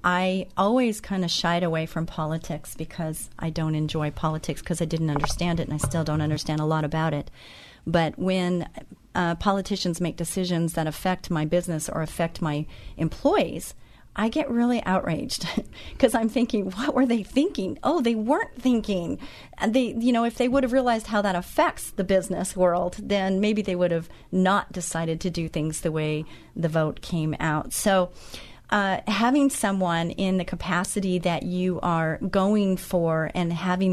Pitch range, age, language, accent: 160-195 Hz, 40-59, English, American